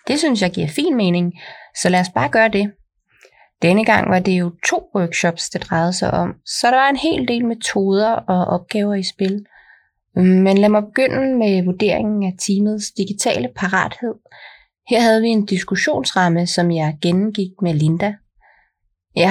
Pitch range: 180-220 Hz